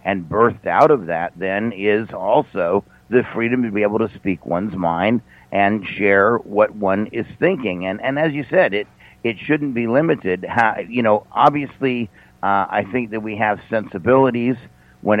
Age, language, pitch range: 50-69, English, 95-120 Hz